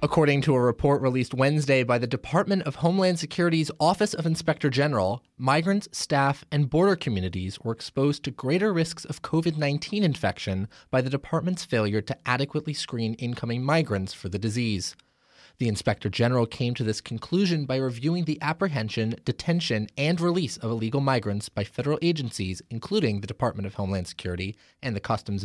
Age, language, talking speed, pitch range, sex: 30-49, English, 165 wpm, 105-150 Hz, male